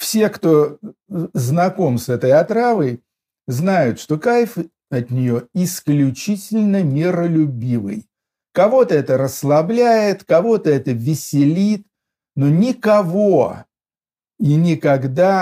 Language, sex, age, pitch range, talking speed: Russian, male, 50-69, 130-180 Hz, 90 wpm